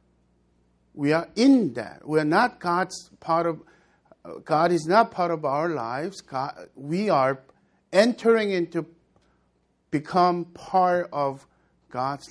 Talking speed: 120 wpm